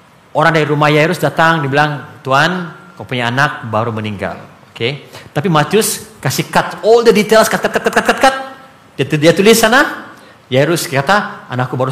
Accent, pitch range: Indonesian, 135-195 Hz